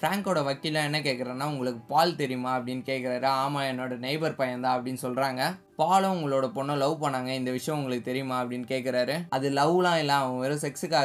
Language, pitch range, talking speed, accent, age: Tamil, 130-155 Hz, 175 wpm, native, 20-39